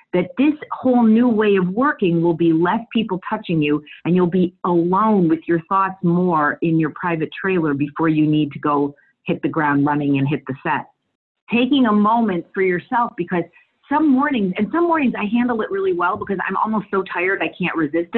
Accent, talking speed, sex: American, 205 wpm, female